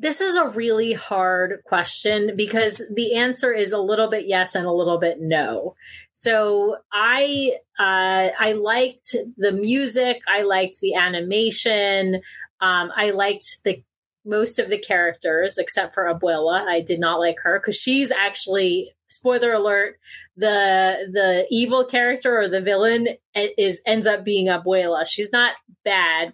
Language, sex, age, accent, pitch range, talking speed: English, female, 30-49, American, 185-225 Hz, 150 wpm